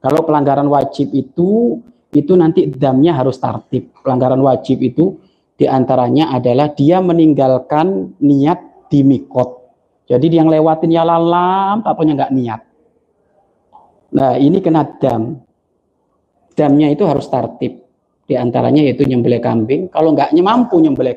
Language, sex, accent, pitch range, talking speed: Indonesian, male, native, 135-180 Hz, 120 wpm